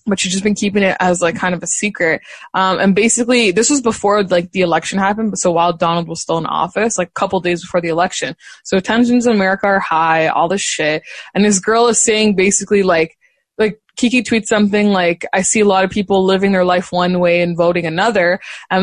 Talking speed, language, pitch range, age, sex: 230 wpm, English, 175-210 Hz, 20-39, female